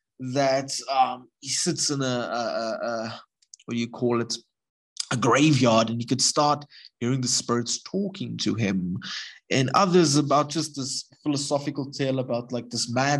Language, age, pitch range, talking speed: English, 20-39, 120-165 Hz, 165 wpm